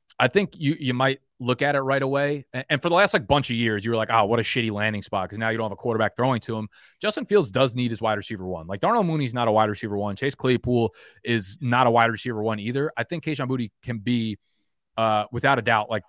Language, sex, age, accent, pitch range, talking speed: English, male, 30-49, American, 105-130 Hz, 270 wpm